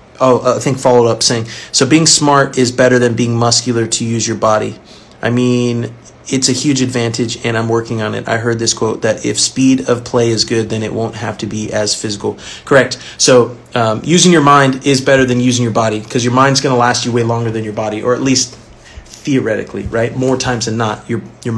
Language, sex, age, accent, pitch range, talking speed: English, male, 30-49, American, 115-135 Hz, 230 wpm